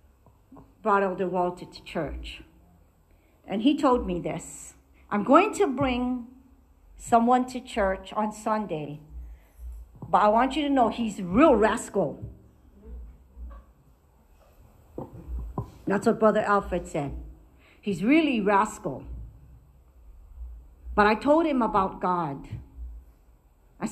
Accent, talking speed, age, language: American, 110 wpm, 50-69, English